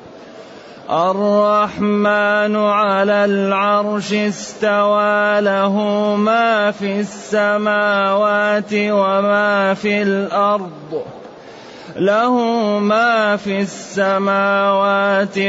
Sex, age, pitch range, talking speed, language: male, 30-49, 195-215 Hz, 60 wpm, Arabic